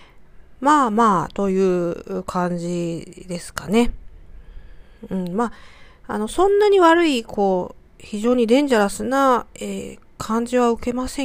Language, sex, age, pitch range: Japanese, female, 40-59, 175-235 Hz